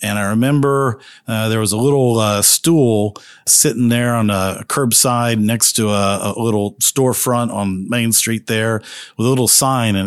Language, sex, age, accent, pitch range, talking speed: English, male, 50-69, American, 105-125 Hz, 180 wpm